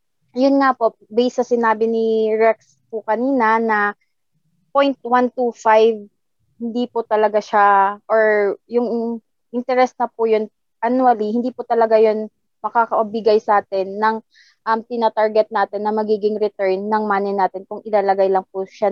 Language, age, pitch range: Filipino, 20-39, 210-240 Hz